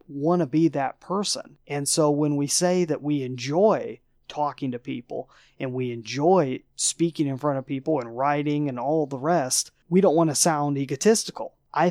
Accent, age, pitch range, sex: American, 30-49, 135-155 Hz, male